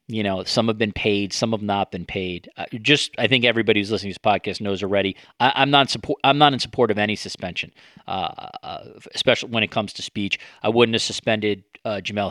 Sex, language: male, English